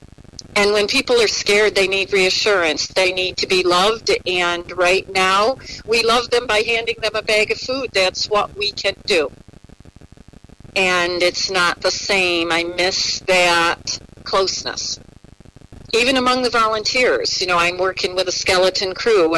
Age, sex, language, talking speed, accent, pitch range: 50-69, female, English, 160 wpm, American, 175-220 Hz